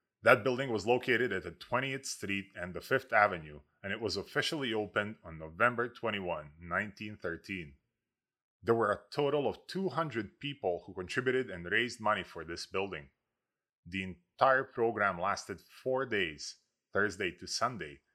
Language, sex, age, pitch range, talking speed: English, male, 30-49, 90-125 Hz, 150 wpm